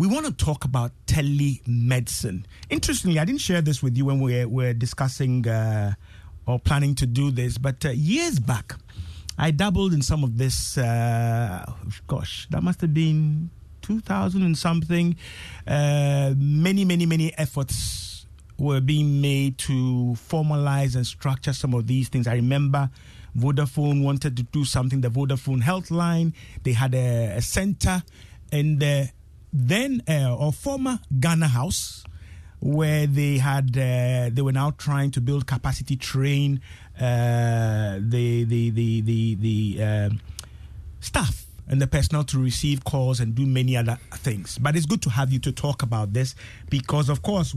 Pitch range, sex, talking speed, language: 120-150 Hz, male, 160 wpm, English